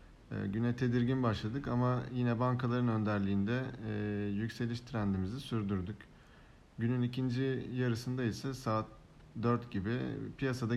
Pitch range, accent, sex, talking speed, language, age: 105-125 Hz, native, male, 105 wpm, Turkish, 50-69